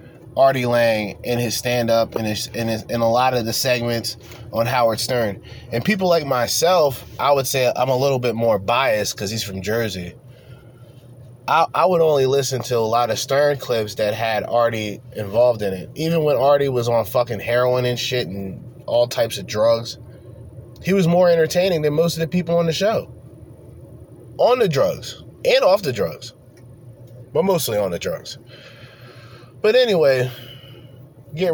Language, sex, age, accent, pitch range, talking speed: English, male, 20-39, American, 120-145 Hz, 175 wpm